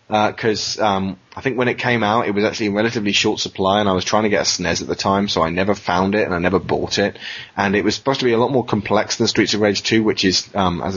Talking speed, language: 300 wpm, English